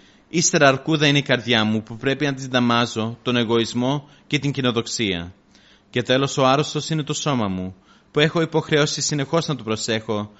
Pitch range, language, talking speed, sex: 110-145 Hz, Greek, 180 wpm, male